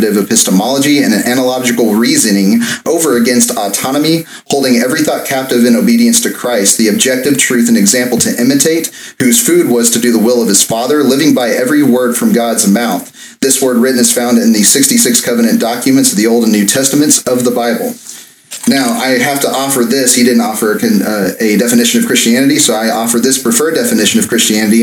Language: English